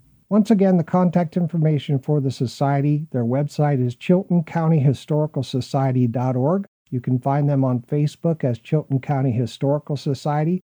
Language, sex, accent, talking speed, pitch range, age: English, male, American, 130 wpm, 130-165 Hz, 50-69